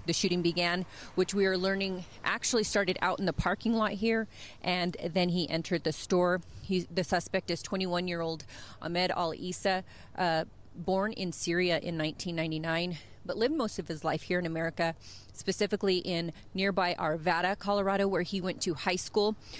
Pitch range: 170-195 Hz